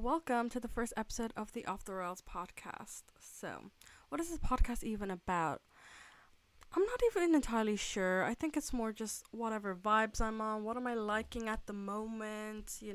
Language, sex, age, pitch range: English, female, 20-39, 190-245 Hz